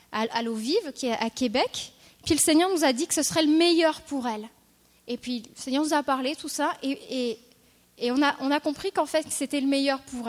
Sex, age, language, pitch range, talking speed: female, 20-39, French, 245-300 Hz, 245 wpm